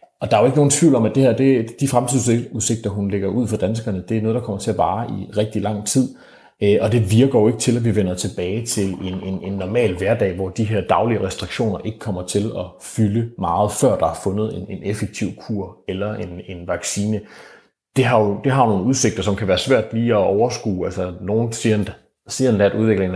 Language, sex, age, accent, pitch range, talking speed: Danish, male, 30-49, native, 95-115 Hz, 220 wpm